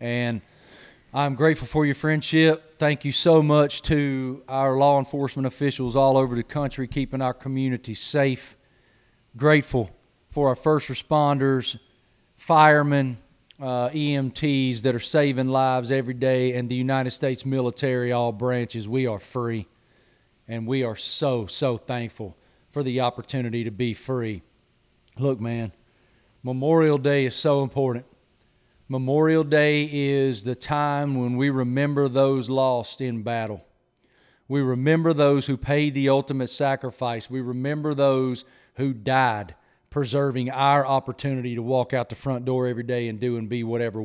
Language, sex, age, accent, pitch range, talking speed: English, male, 40-59, American, 120-140 Hz, 145 wpm